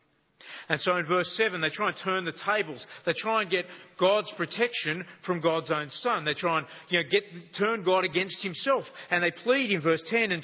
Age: 40-59